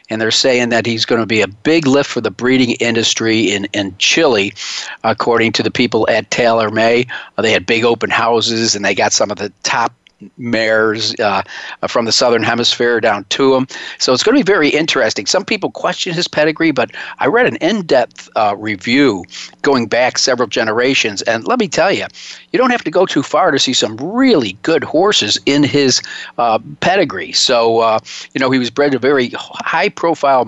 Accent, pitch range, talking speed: American, 115-130 Hz, 200 wpm